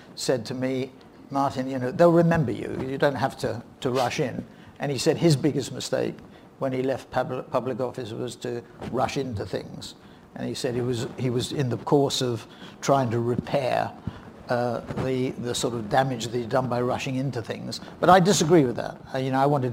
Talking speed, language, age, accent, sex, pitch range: 205 wpm, English, 60-79, British, male, 120-140 Hz